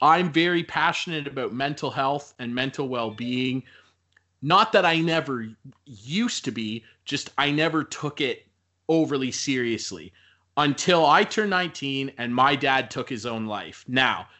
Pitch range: 125-165 Hz